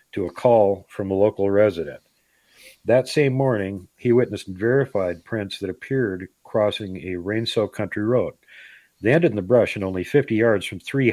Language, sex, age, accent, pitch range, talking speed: English, male, 50-69, American, 95-120 Hz, 175 wpm